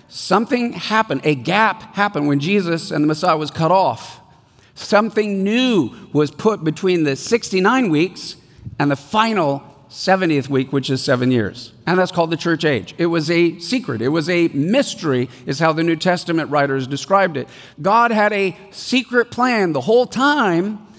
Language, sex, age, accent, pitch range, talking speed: English, male, 50-69, American, 145-210 Hz, 170 wpm